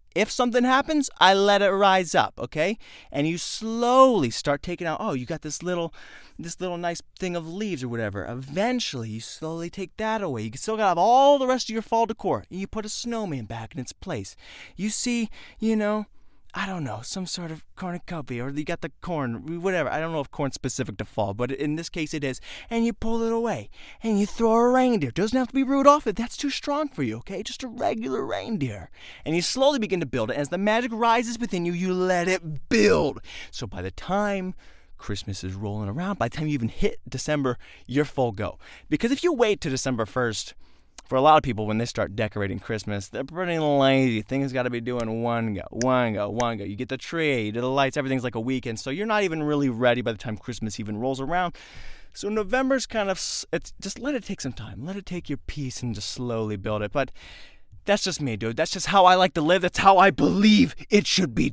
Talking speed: 240 wpm